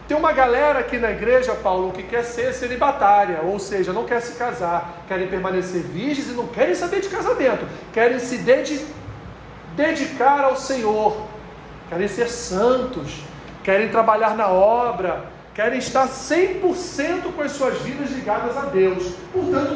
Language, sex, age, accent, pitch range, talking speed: Portuguese, male, 40-59, Brazilian, 190-295 Hz, 150 wpm